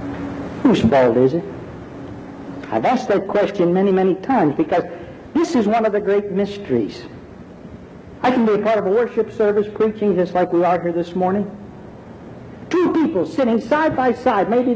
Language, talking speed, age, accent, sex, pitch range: English, 175 wpm, 60-79, American, male, 165-245 Hz